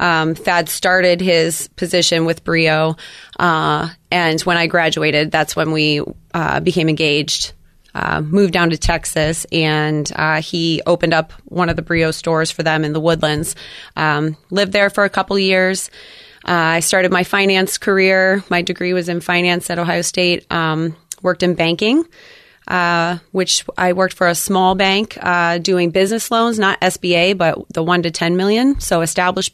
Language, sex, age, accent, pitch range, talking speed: English, female, 30-49, American, 170-190 Hz, 175 wpm